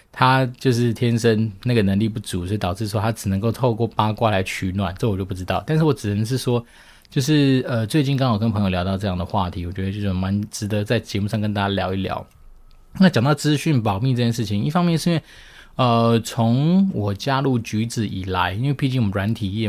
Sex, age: male, 20-39